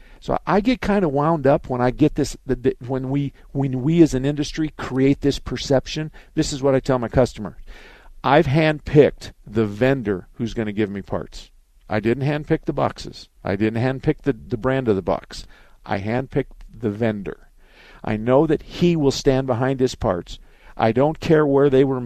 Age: 50-69